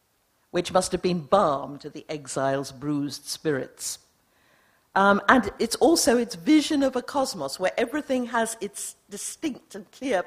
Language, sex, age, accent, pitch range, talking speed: English, female, 50-69, British, 145-230 Hz, 150 wpm